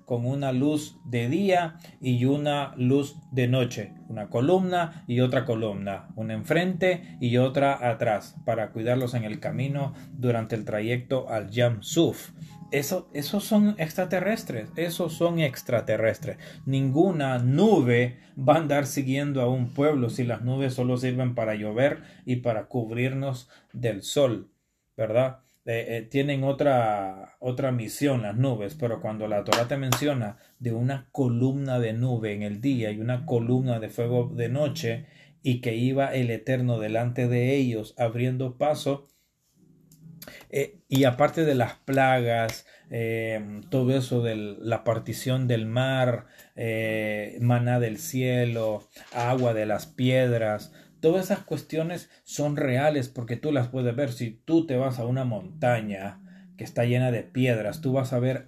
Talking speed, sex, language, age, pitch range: 150 wpm, male, Spanish, 30-49, 120-145 Hz